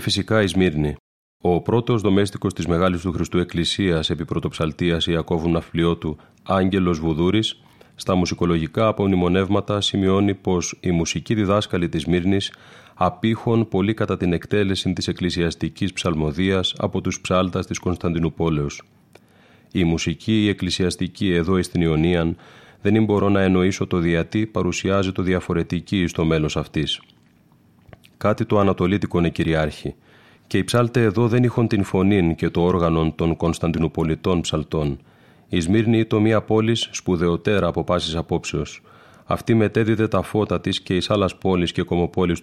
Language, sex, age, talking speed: Greek, male, 30-49, 140 wpm